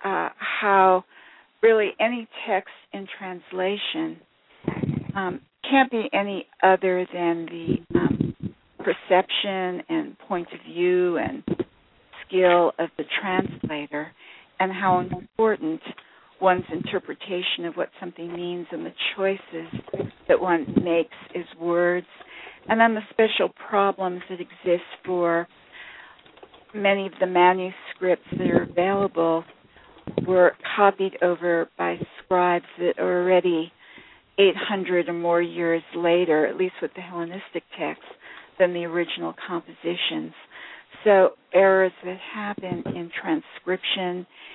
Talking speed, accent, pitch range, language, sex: 115 wpm, American, 170-200 Hz, English, female